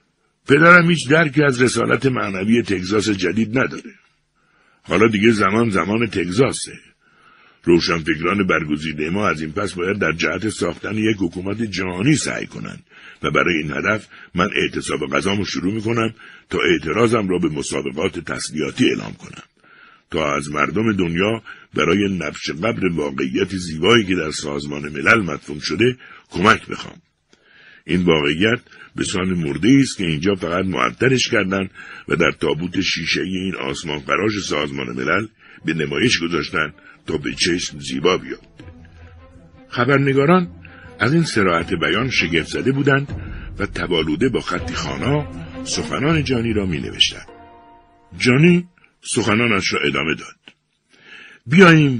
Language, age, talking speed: Persian, 60-79, 130 wpm